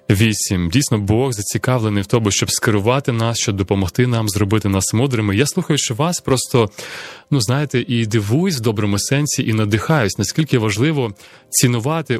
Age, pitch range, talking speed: 30-49, 105-135 Hz, 155 wpm